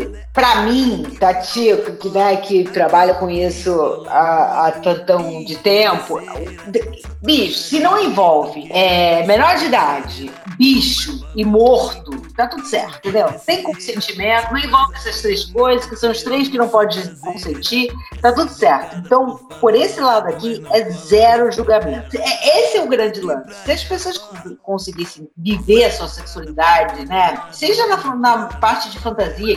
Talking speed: 150 wpm